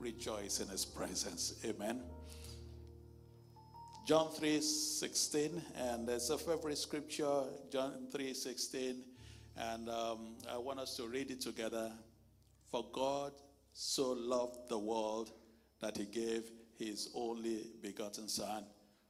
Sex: male